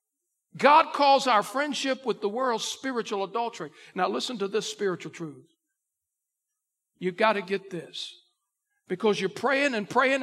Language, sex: English, male